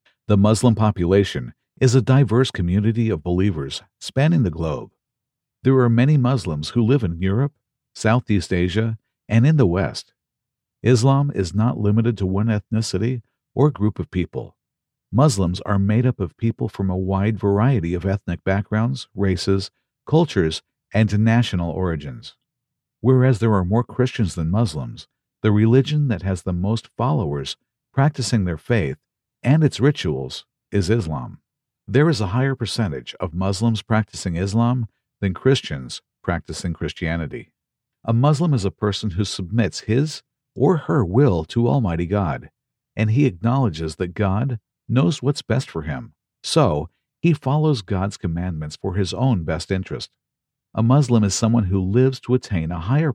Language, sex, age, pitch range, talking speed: English, male, 50-69, 95-130 Hz, 150 wpm